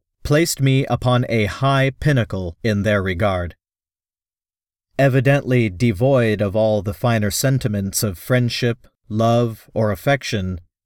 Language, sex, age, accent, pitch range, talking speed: English, male, 40-59, American, 100-130 Hz, 115 wpm